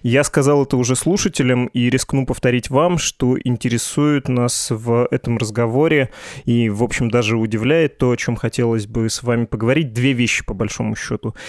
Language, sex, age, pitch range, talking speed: Russian, male, 20-39, 115-140 Hz, 170 wpm